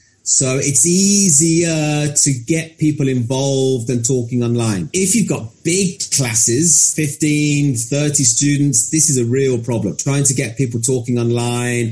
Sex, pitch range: male, 130-160 Hz